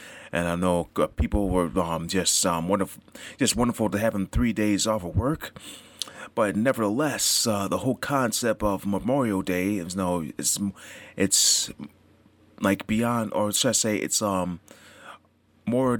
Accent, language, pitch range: American, English, 90-110 Hz